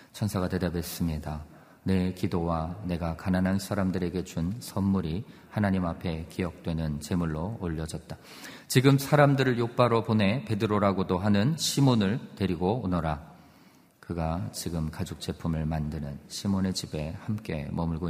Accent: native